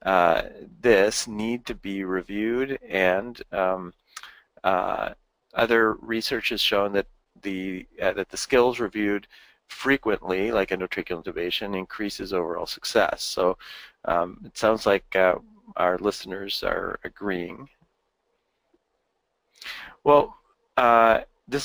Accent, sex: American, male